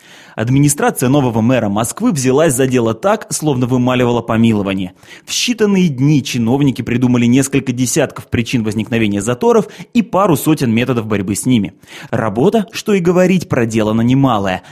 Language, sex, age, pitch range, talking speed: Russian, male, 20-39, 115-155 Hz, 140 wpm